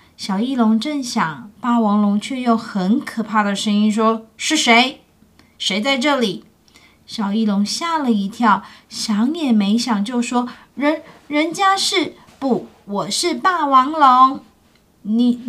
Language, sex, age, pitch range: Chinese, female, 20-39, 215-260 Hz